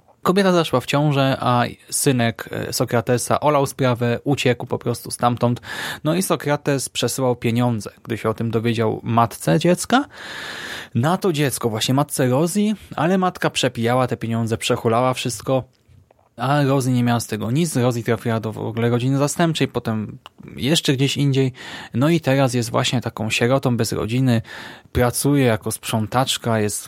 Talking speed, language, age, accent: 155 wpm, Polish, 20-39, native